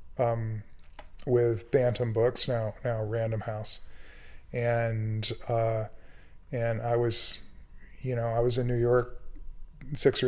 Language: English